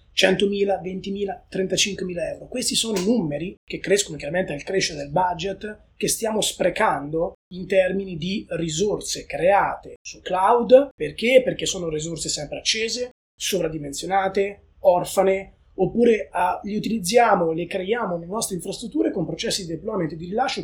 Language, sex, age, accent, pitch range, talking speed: Italian, male, 20-39, native, 175-230 Hz, 140 wpm